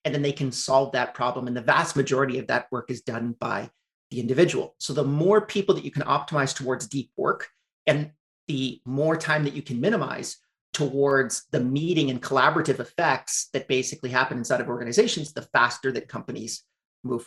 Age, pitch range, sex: 40-59, 130-155 Hz, male